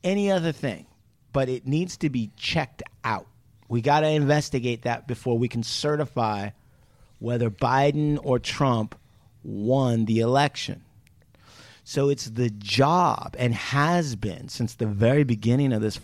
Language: English